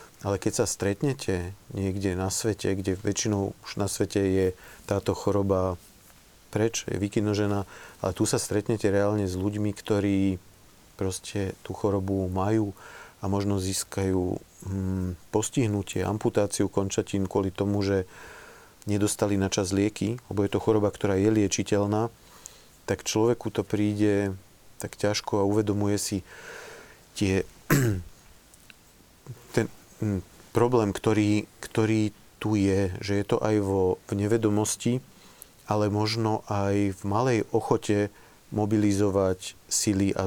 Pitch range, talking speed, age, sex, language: 95-105 Hz, 120 wpm, 40-59, male, Slovak